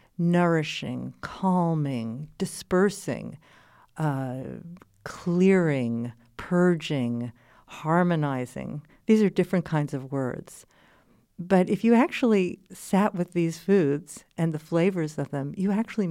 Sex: female